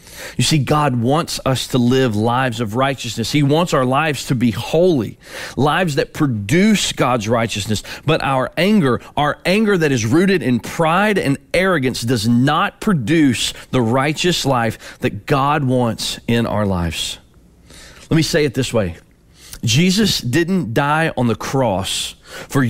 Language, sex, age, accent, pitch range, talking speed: English, male, 30-49, American, 110-150 Hz, 155 wpm